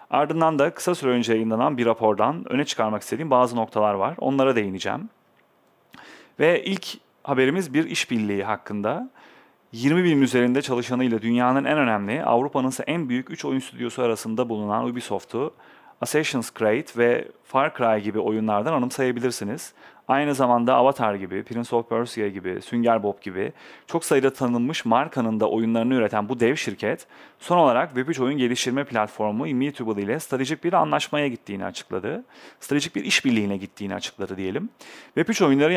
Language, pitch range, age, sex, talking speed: Turkish, 110-140 Hz, 30-49, male, 150 wpm